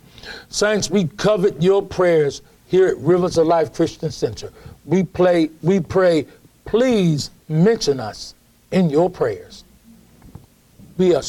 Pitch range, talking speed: 160-205 Hz, 120 wpm